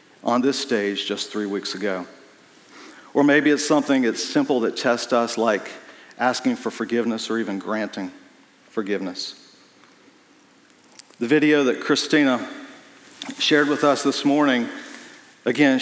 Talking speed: 130 wpm